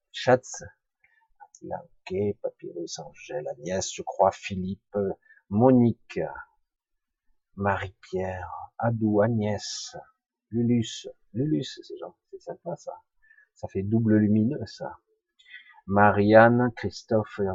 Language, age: French, 50-69